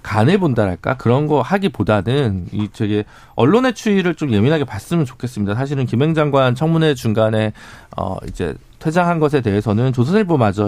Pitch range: 105-155 Hz